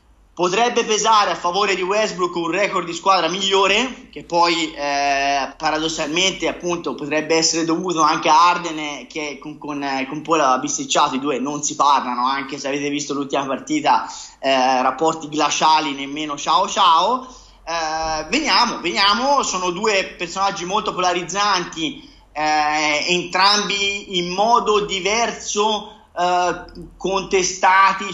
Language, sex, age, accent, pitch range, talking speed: Italian, male, 30-49, native, 155-190 Hz, 130 wpm